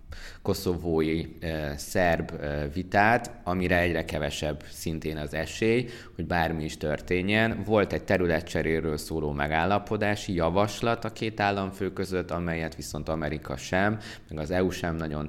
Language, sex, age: Hungarian, male, 20-39